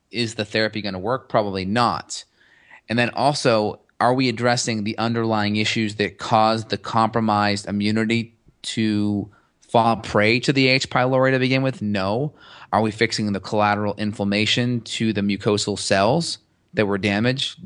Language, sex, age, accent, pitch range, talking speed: English, male, 30-49, American, 105-120 Hz, 155 wpm